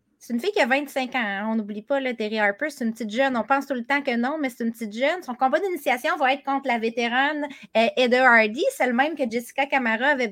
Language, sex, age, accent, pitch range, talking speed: French, female, 30-49, Canadian, 230-295 Hz, 260 wpm